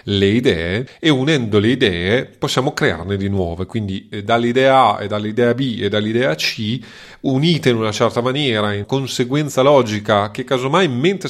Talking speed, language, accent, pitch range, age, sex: 160 wpm, Italian, native, 100-125 Hz, 30-49, male